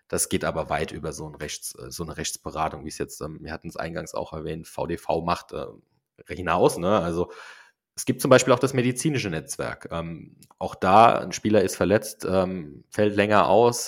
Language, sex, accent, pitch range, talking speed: German, male, German, 85-100 Hz, 195 wpm